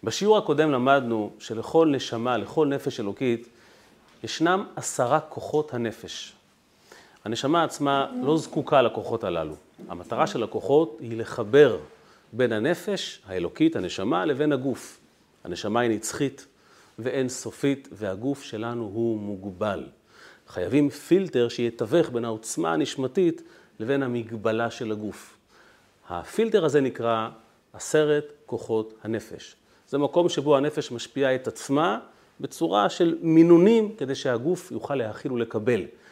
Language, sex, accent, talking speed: Hebrew, male, native, 115 wpm